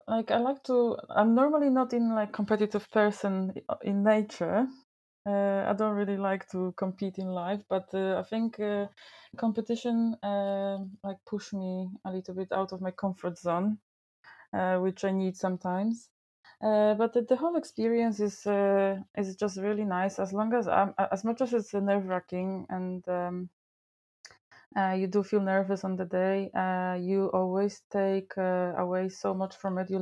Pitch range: 185-210 Hz